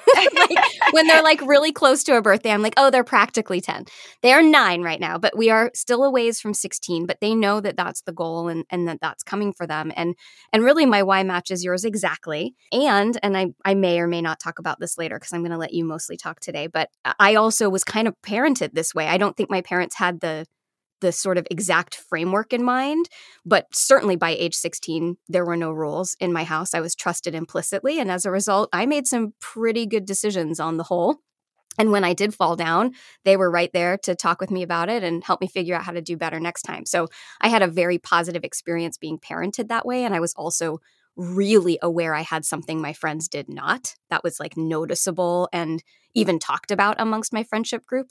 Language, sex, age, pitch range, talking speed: English, female, 20-39, 170-220 Hz, 230 wpm